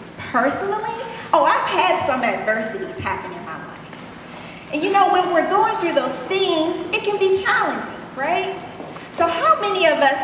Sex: female